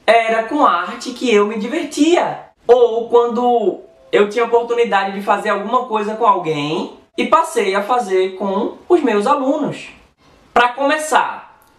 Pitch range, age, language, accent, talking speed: 205-260 Hz, 20-39, Portuguese, Brazilian, 145 wpm